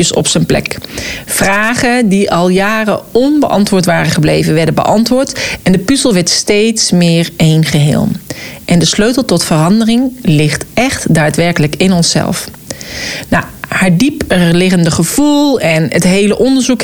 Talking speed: 135 wpm